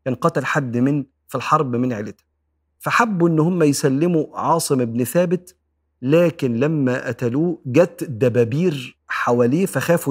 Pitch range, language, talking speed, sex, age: 120-160 Hz, Arabic, 130 wpm, male, 40-59